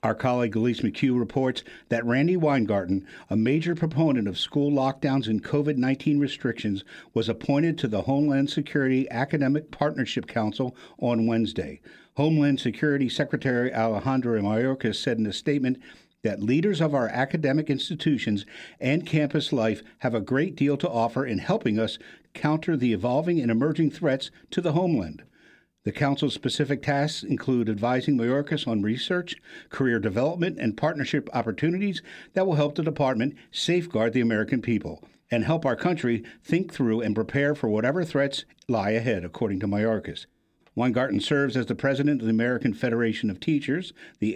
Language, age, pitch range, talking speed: English, 50-69, 115-145 Hz, 155 wpm